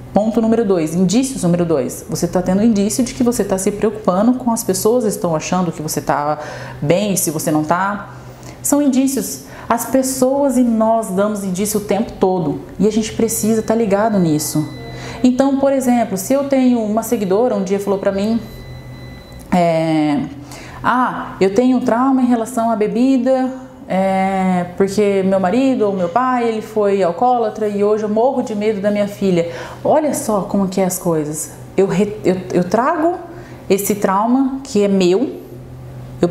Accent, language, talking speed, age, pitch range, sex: Brazilian, Portuguese, 180 wpm, 30-49, 175-230 Hz, female